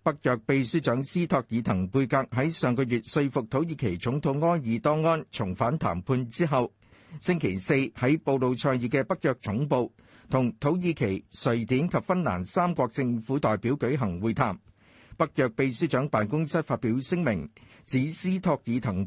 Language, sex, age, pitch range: Chinese, male, 50-69, 110-155 Hz